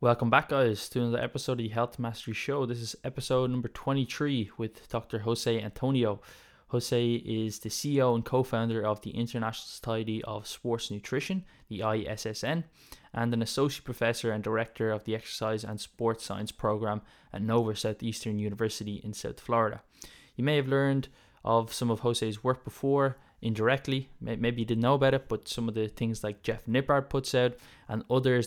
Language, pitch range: English, 110-125 Hz